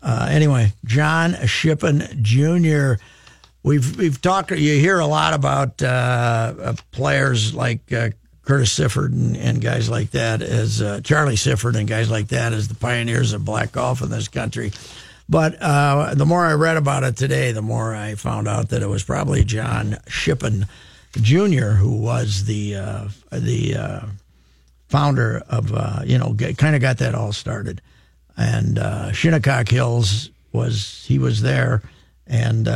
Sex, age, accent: male, 60-79, American